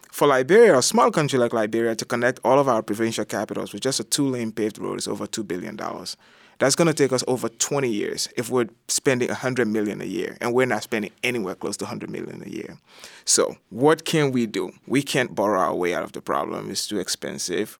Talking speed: 225 wpm